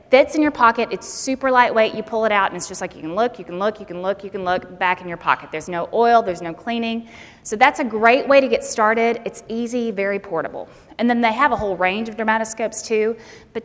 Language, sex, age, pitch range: English, female, 20-39, 190-240 Hz